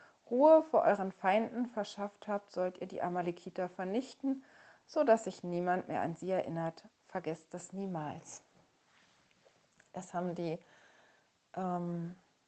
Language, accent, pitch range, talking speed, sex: German, German, 180-235 Hz, 125 wpm, female